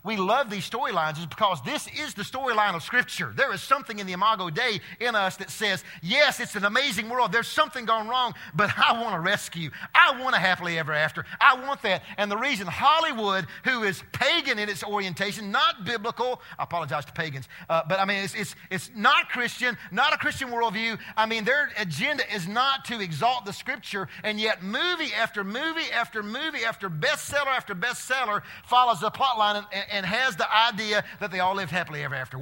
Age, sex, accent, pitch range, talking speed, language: 40-59, male, American, 155-230 Hz, 205 wpm, English